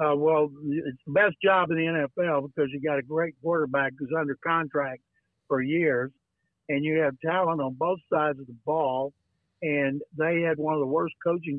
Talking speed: 195 wpm